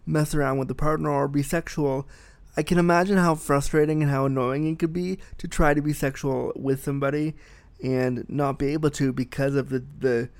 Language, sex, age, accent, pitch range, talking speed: English, male, 20-39, American, 130-155 Hz, 200 wpm